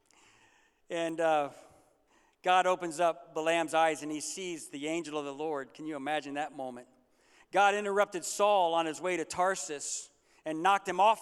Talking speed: 170 wpm